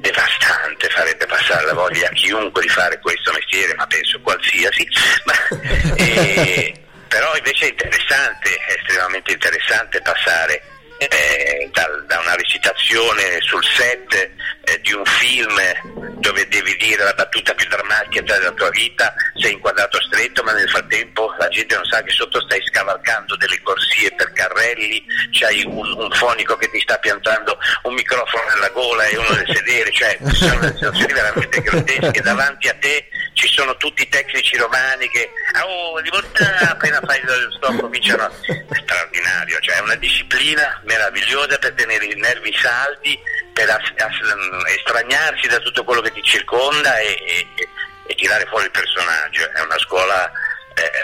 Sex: male